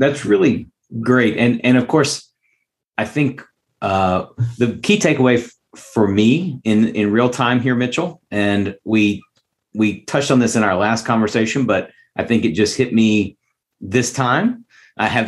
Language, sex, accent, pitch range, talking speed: English, male, American, 105-125 Hz, 170 wpm